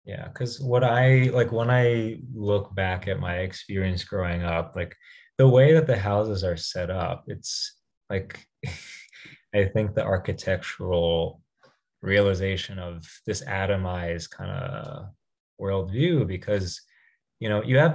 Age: 20-39